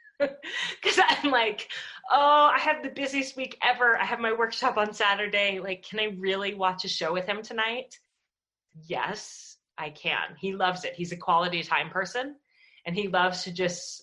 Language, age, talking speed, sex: English, 30-49, 180 wpm, female